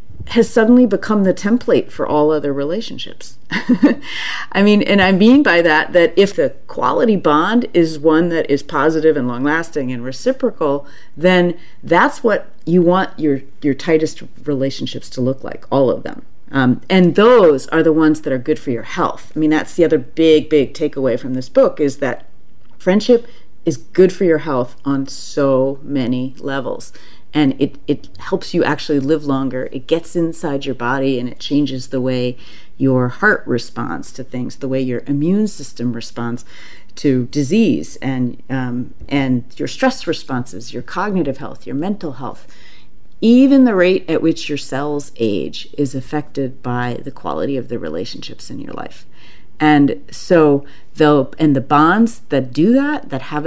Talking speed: 170 wpm